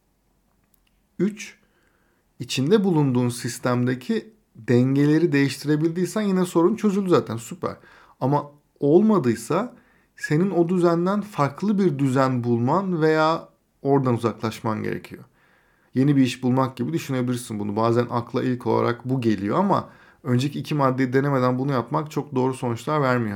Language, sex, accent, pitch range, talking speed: Turkish, male, native, 120-145 Hz, 125 wpm